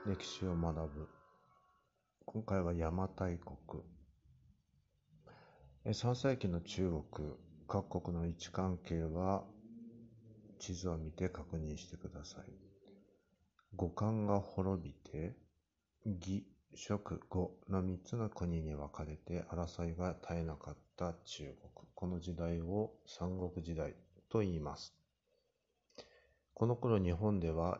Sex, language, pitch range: male, Japanese, 85-100 Hz